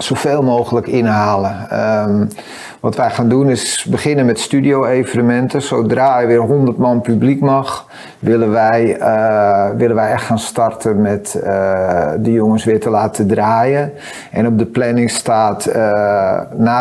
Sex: male